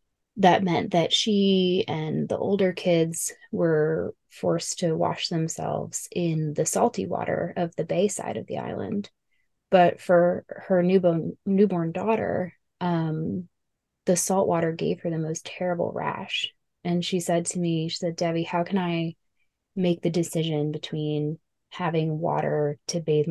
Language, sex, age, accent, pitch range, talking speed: English, female, 20-39, American, 165-195 Hz, 150 wpm